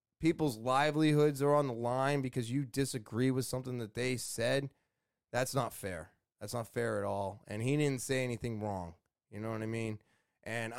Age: 20-39